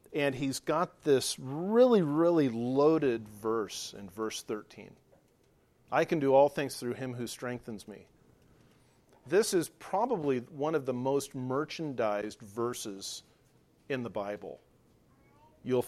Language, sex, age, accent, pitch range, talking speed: English, male, 50-69, American, 125-160 Hz, 130 wpm